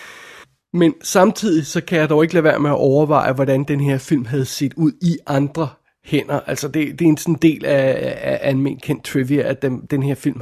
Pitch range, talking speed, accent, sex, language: 140-160 Hz, 220 wpm, native, male, Danish